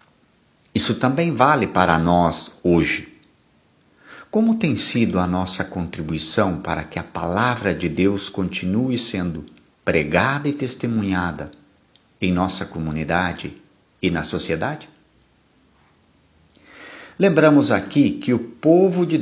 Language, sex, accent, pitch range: Portuguese, male, Brazilian, 85-120 Hz